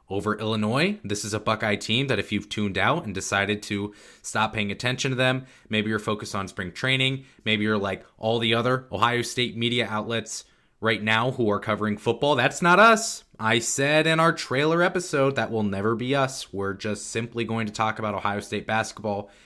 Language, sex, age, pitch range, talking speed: English, male, 20-39, 100-130 Hz, 205 wpm